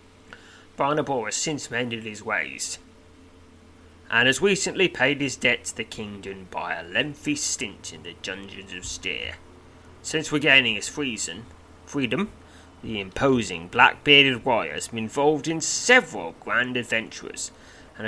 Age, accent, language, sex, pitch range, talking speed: 30-49, British, English, male, 90-140 Hz, 135 wpm